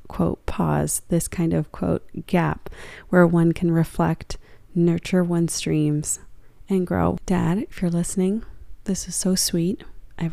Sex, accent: female, American